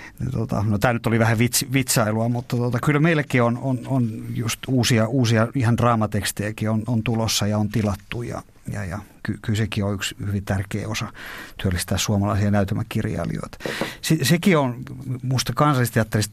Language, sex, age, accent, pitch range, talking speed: Finnish, male, 50-69, native, 105-115 Hz, 160 wpm